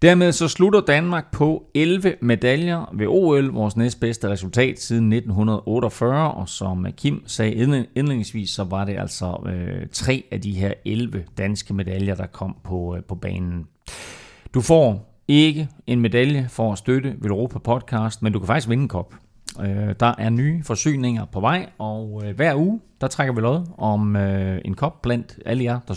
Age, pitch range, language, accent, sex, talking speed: 30-49, 105-135 Hz, Danish, native, male, 180 wpm